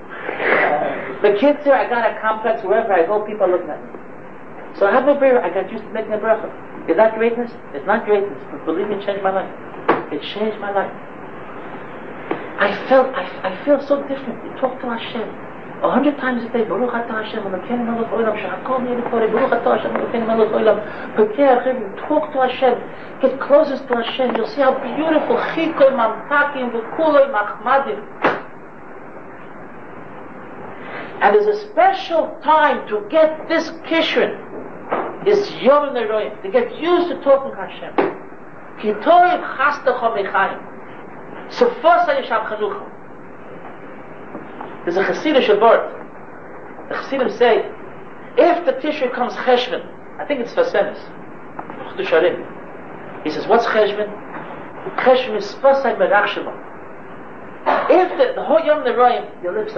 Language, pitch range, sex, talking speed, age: English, 215-295 Hz, male, 135 wpm, 40-59